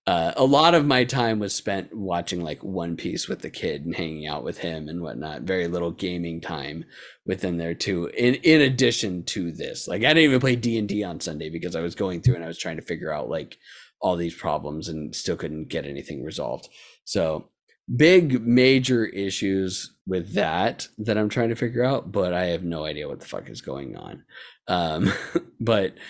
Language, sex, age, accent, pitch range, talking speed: English, male, 30-49, American, 95-120 Hz, 205 wpm